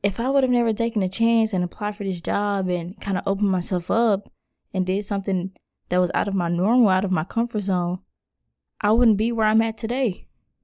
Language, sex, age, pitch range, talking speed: English, female, 20-39, 180-230 Hz, 225 wpm